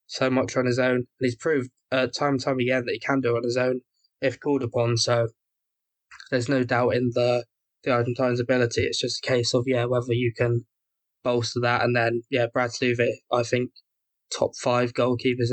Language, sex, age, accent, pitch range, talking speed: English, male, 10-29, British, 120-125 Hz, 205 wpm